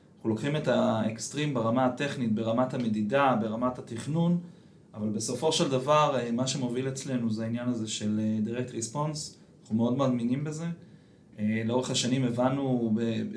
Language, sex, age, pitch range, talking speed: Hebrew, male, 30-49, 115-150 Hz, 130 wpm